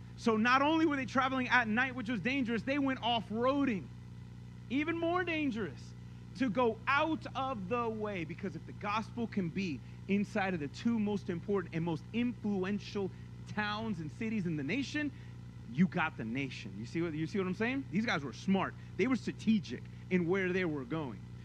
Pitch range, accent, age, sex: 140-235 Hz, American, 30-49, male